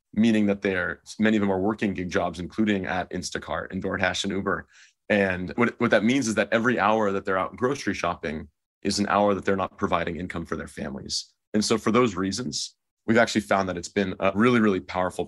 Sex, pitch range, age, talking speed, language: male, 90-105 Hz, 30-49, 230 wpm, English